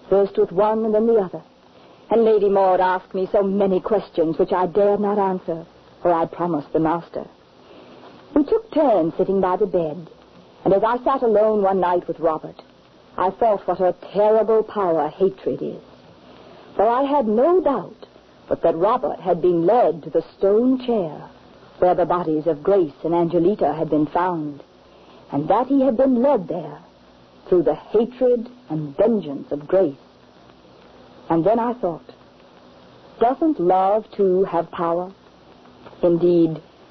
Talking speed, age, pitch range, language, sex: 160 wpm, 50-69, 165-215 Hz, English, female